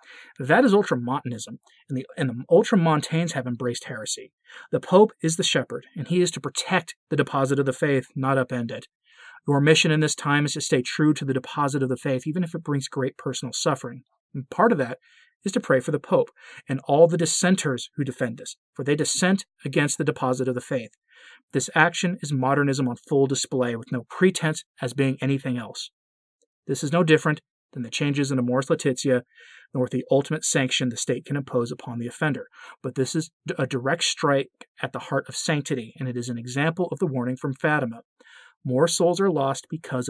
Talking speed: 205 wpm